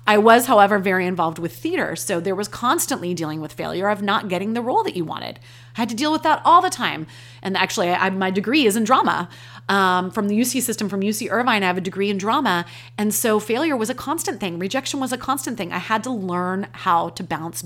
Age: 30-49